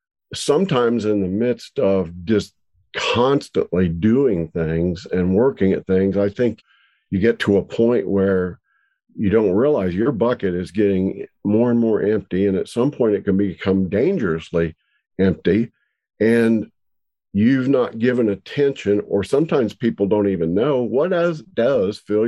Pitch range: 95-115 Hz